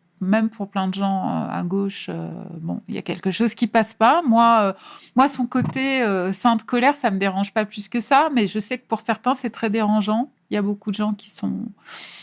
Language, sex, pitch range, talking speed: French, female, 190-225 Hz, 250 wpm